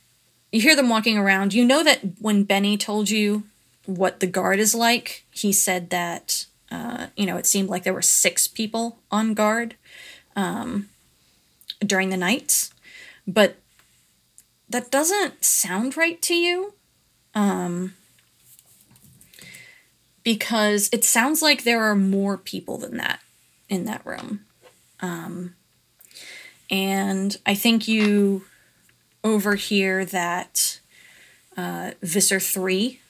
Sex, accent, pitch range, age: female, American, 185-215 Hz, 30-49